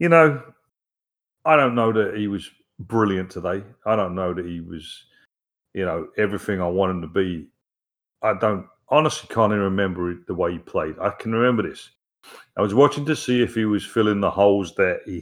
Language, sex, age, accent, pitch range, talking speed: English, male, 40-59, British, 100-140 Hz, 205 wpm